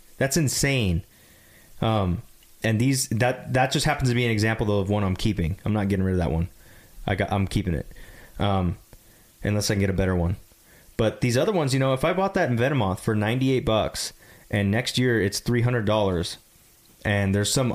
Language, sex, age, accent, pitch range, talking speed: English, male, 20-39, American, 100-130 Hz, 205 wpm